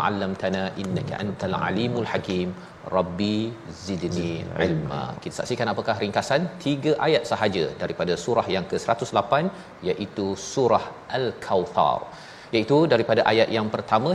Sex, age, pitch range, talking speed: male, 40-59, 100-125 Hz, 115 wpm